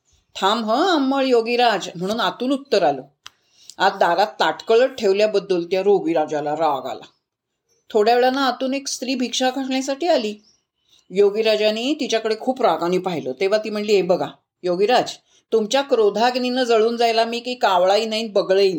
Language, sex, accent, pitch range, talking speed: Marathi, female, native, 205-270 Hz, 145 wpm